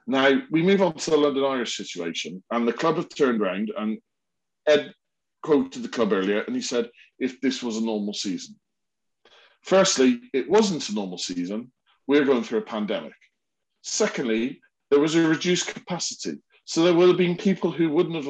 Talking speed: 185 wpm